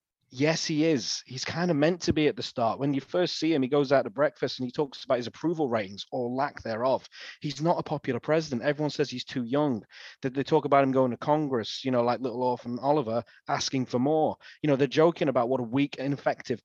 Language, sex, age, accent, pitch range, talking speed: English, male, 30-49, British, 120-145 Hz, 240 wpm